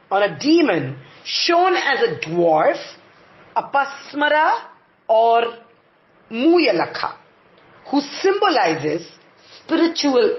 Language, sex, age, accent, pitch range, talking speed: English, female, 40-59, Indian, 220-330 Hz, 80 wpm